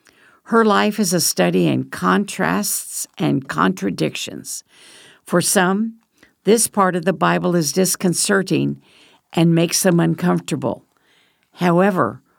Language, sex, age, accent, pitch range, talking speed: English, female, 60-79, American, 160-205 Hz, 110 wpm